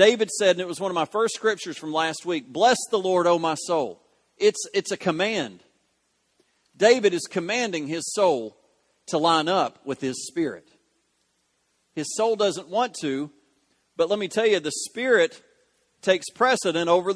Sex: male